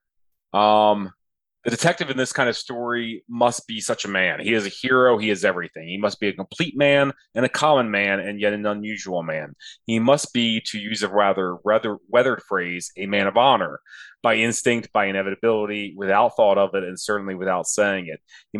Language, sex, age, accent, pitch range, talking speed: English, male, 30-49, American, 90-115 Hz, 205 wpm